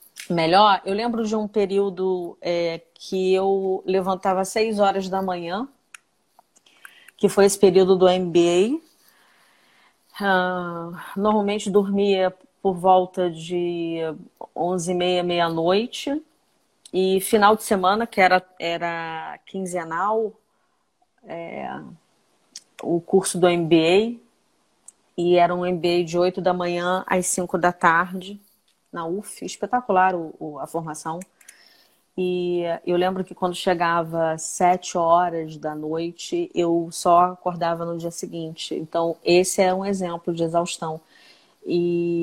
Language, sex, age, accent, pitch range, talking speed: Portuguese, female, 40-59, Brazilian, 170-205 Hz, 115 wpm